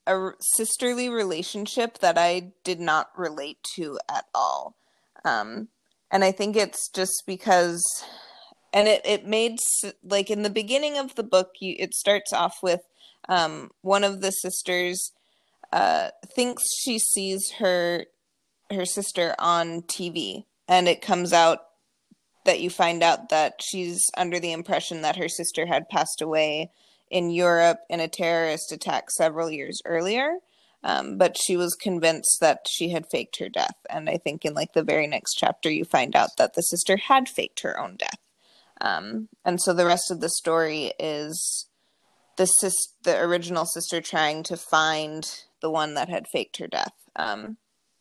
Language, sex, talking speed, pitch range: English, female, 165 wpm, 170-200 Hz